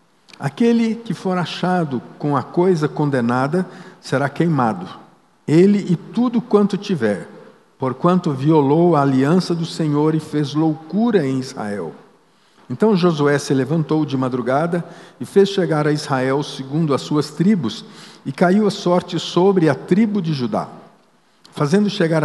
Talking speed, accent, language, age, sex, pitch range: 140 wpm, Brazilian, Portuguese, 60-79, male, 140-185 Hz